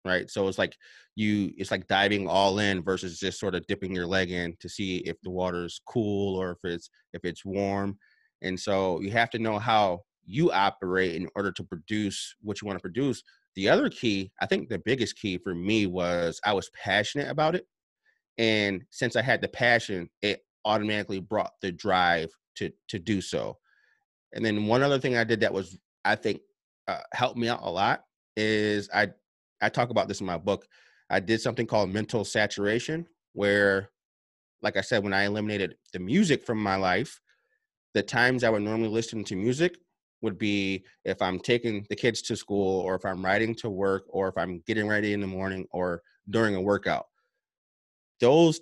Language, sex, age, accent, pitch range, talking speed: English, male, 30-49, American, 95-115 Hz, 195 wpm